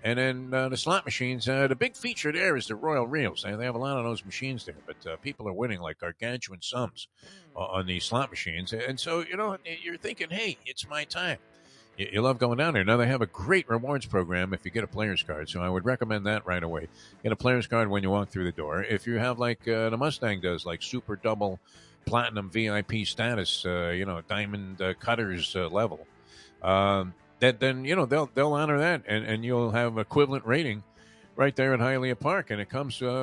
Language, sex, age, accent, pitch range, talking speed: English, male, 50-69, American, 100-135 Hz, 235 wpm